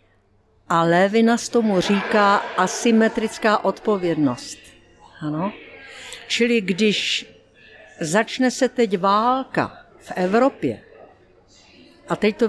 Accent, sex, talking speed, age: native, female, 90 wpm, 50-69